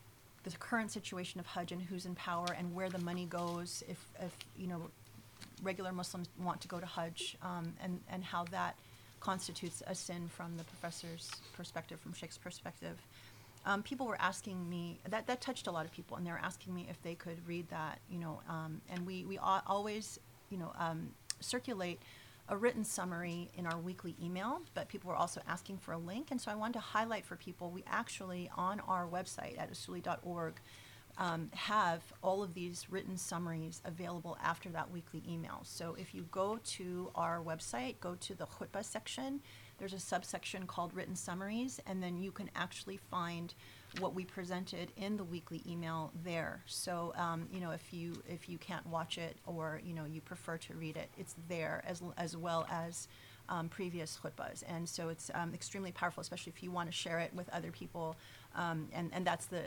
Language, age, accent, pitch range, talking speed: English, 30-49, American, 165-185 Hz, 195 wpm